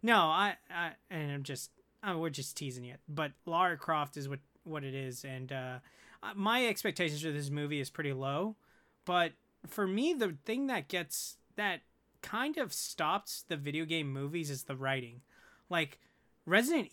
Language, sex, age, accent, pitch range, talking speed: English, male, 20-39, American, 140-170 Hz, 175 wpm